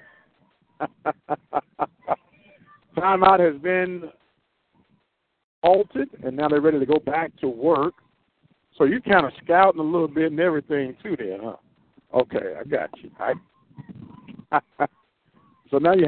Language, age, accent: English, 60-79, American